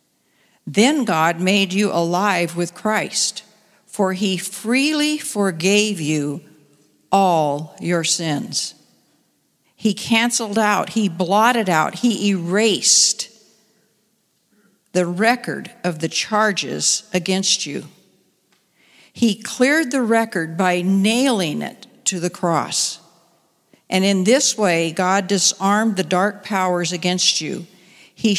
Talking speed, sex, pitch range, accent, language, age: 110 wpm, female, 180-225 Hz, American, English, 60-79